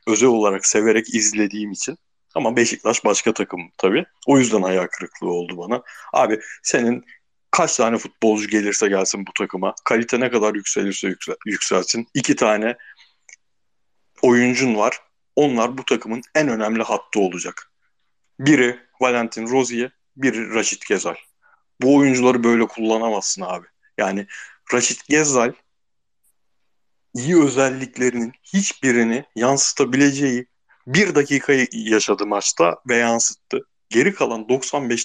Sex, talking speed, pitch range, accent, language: male, 120 wpm, 110-140 Hz, native, Turkish